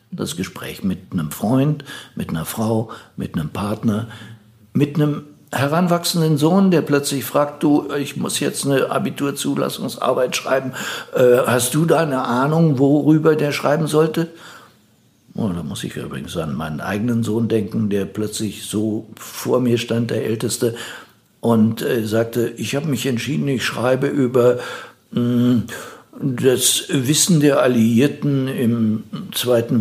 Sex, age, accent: male, 60-79, German